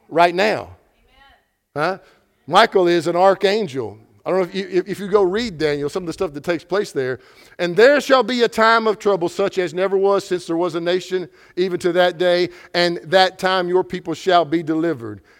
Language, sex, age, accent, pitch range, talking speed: English, male, 50-69, American, 155-195 Hz, 210 wpm